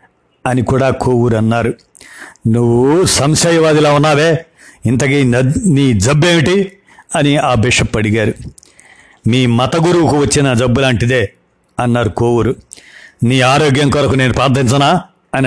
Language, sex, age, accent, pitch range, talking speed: Telugu, male, 60-79, native, 125-155 Hz, 110 wpm